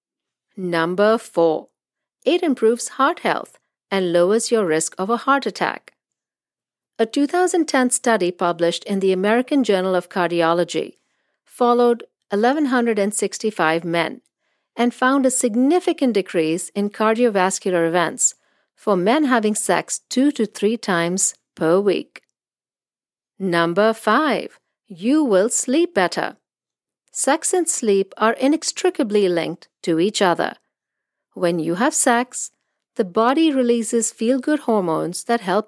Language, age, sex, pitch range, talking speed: English, 50-69, female, 180-270 Hz, 120 wpm